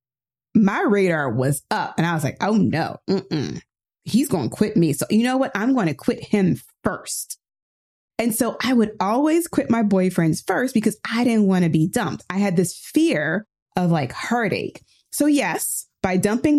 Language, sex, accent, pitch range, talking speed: English, female, American, 185-245 Hz, 195 wpm